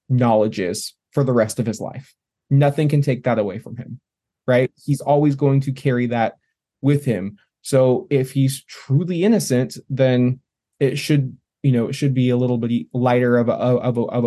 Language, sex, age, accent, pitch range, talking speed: English, male, 20-39, American, 125-145 Hz, 195 wpm